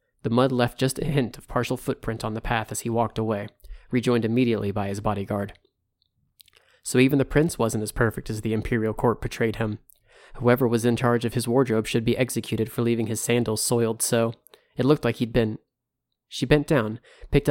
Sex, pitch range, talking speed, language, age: male, 110-130 Hz, 200 wpm, English, 30-49